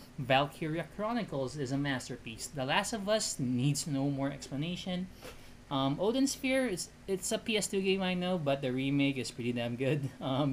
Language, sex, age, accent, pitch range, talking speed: Filipino, male, 20-39, native, 125-185 Hz, 175 wpm